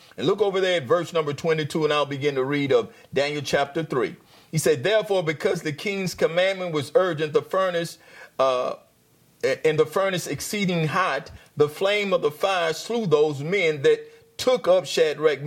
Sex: male